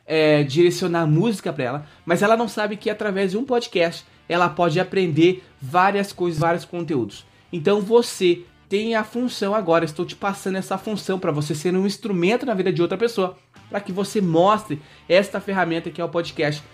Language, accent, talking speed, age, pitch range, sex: Portuguese, Brazilian, 185 wpm, 20-39, 170-230 Hz, male